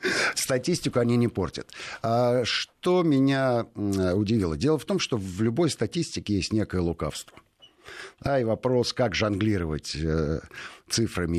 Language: Russian